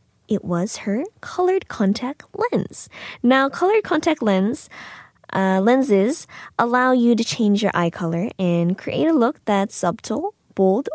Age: 20-39